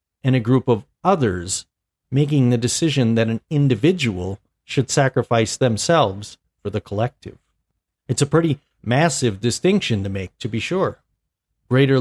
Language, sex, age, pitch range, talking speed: English, male, 40-59, 110-155 Hz, 140 wpm